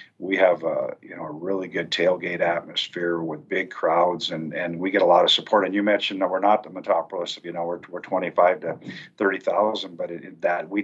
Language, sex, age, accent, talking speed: English, male, 50-69, American, 220 wpm